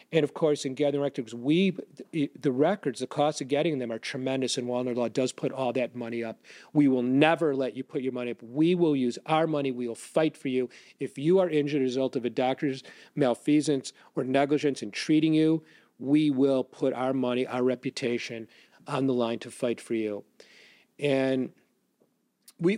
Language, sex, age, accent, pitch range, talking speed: English, male, 40-59, American, 130-170 Hz, 200 wpm